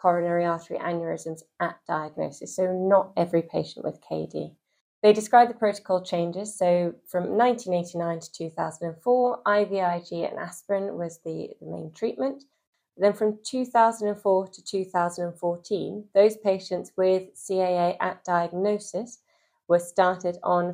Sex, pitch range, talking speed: female, 175-210 Hz, 125 wpm